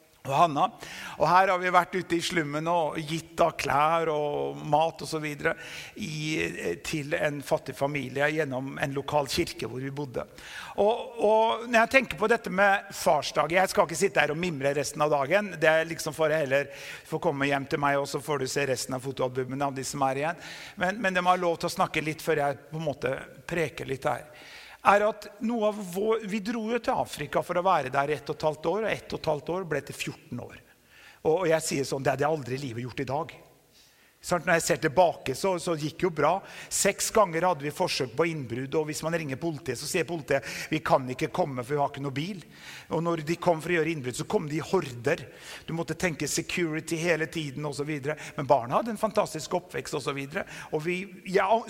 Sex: male